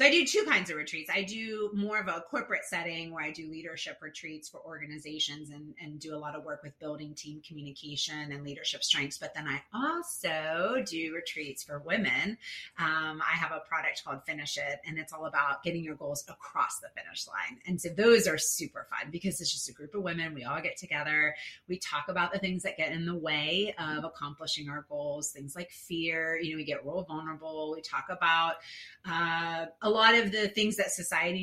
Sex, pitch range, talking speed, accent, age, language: female, 150-190 Hz, 210 wpm, American, 30-49, English